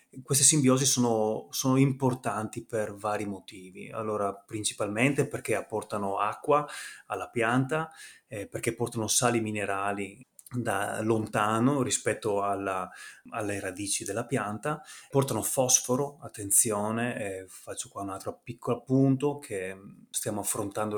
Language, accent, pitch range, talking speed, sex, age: Italian, native, 105-130 Hz, 110 wpm, male, 20-39